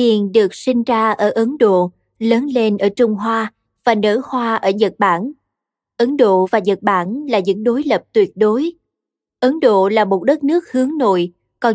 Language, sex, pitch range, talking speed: Vietnamese, female, 205-260 Hz, 195 wpm